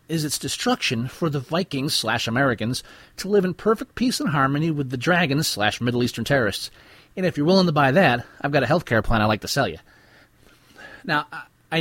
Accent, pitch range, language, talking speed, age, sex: American, 115-150 Hz, English, 195 wpm, 30-49, male